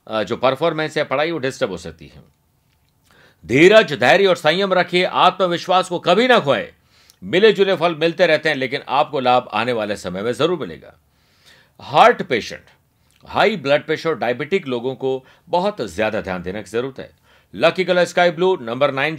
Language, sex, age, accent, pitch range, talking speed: Hindi, male, 50-69, native, 130-170 Hz, 170 wpm